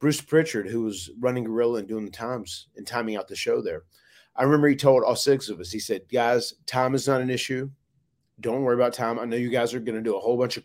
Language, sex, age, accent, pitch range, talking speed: English, male, 30-49, American, 120-145 Hz, 270 wpm